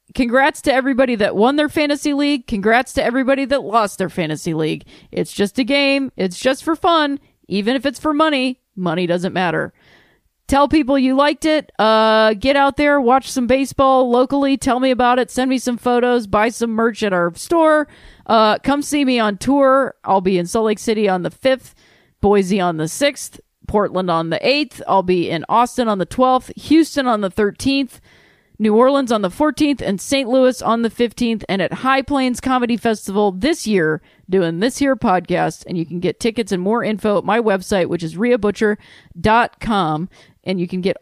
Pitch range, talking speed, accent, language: 200-270 Hz, 195 wpm, American, English